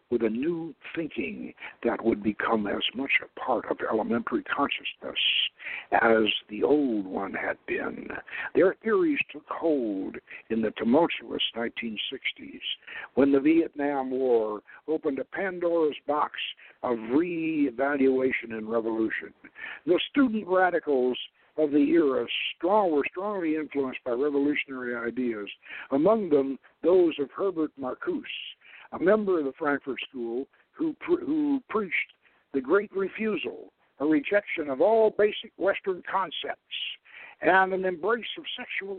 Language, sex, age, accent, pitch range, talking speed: English, male, 60-79, American, 145-225 Hz, 130 wpm